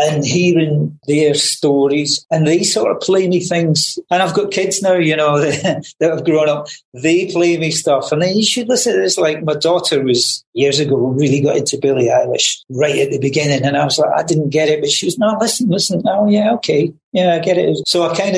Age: 40-59